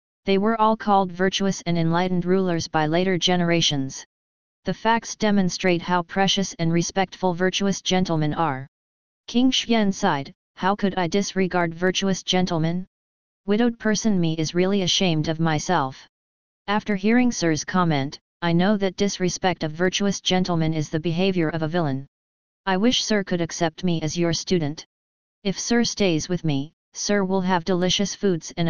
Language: English